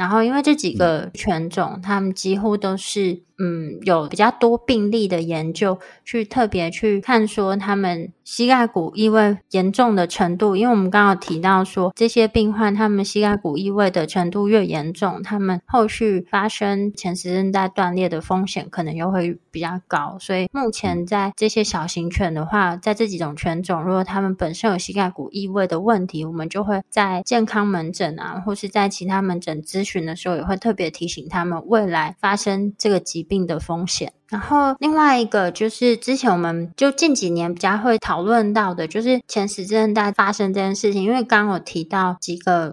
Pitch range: 180-220 Hz